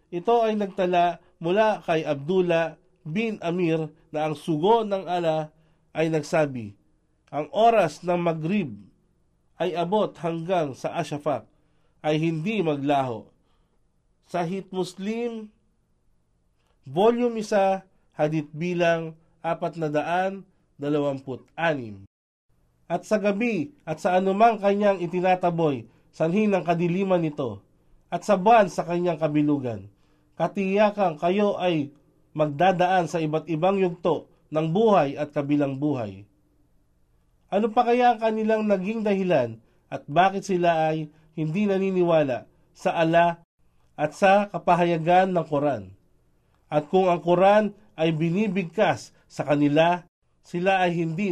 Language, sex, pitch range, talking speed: Filipino, male, 145-190 Hz, 115 wpm